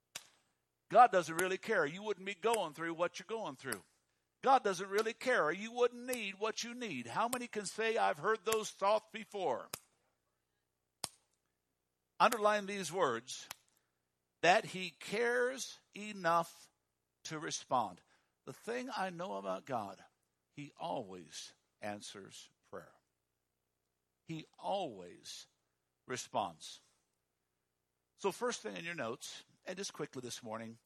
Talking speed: 125 wpm